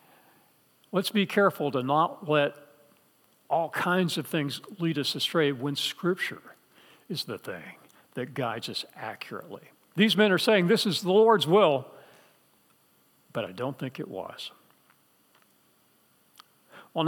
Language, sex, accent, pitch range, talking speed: English, male, American, 145-195 Hz, 135 wpm